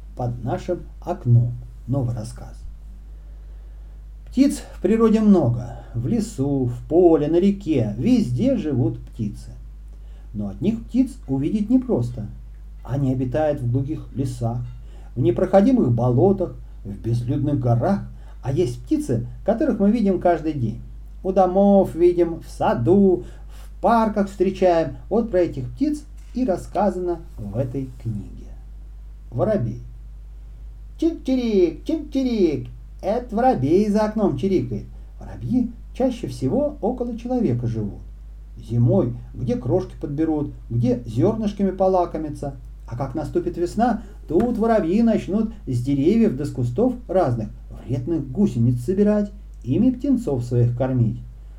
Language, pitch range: Russian, 120-195 Hz